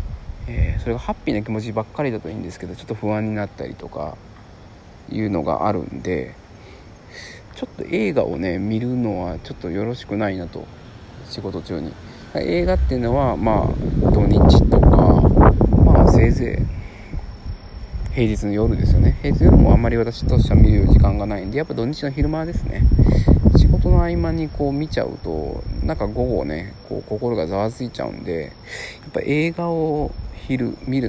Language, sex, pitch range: Japanese, male, 90-115 Hz